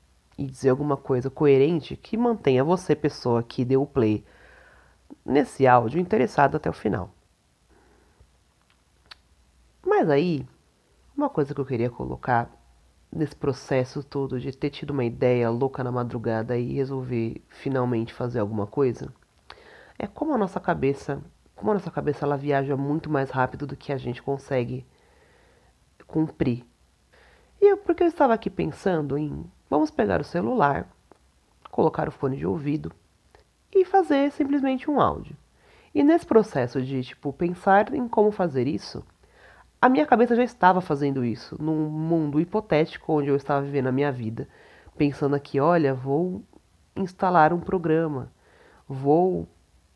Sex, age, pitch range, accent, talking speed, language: female, 30-49, 130-185 Hz, Brazilian, 145 wpm, Portuguese